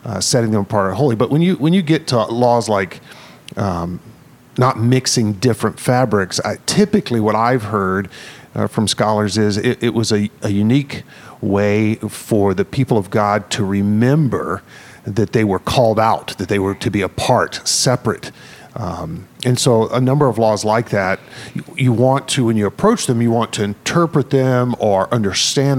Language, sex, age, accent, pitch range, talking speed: English, male, 50-69, American, 105-145 Hz, 185 wpm